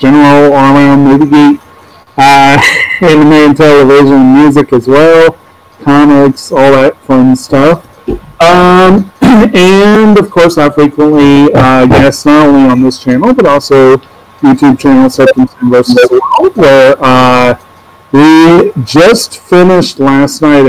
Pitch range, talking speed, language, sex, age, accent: 130-160 Hz, 120 wpm, English, male, 40-59, American